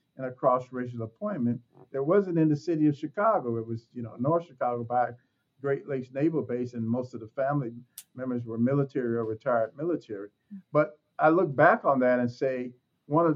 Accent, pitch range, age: American, 120-145 Hz, 50-69